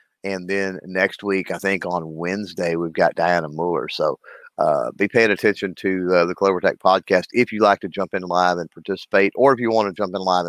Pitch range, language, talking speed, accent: 90-115 Hz, English, 230 wpm, American